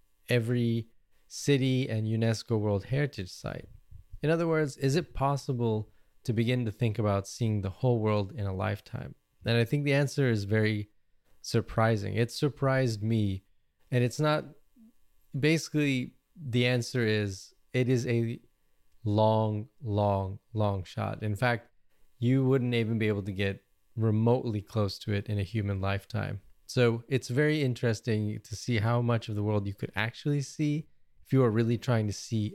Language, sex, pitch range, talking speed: English, male, 105-125 Hz, 165 wpm